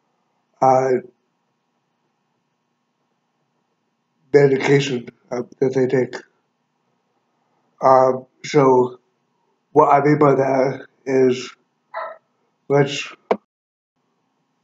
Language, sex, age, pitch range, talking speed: English, male, 60-79, 125-140 Hz, 60 wpm